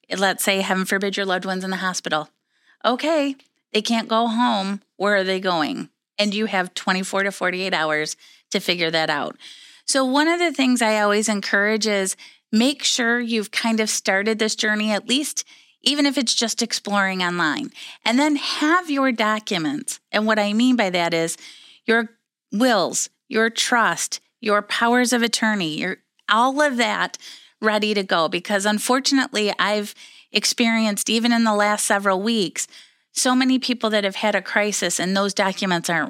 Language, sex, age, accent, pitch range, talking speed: English, female, 30-49, American, 195-245 Hz, 175 wpm